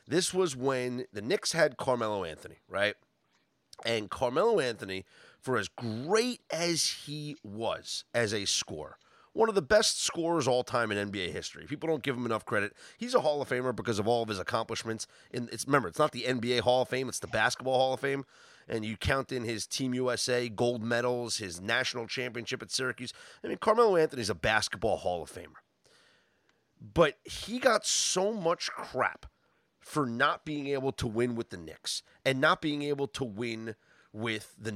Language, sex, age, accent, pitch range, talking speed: English, male, 30-49, American, 115-150 Hz, 185 wpm